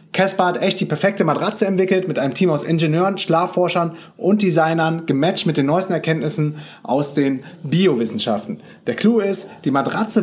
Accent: German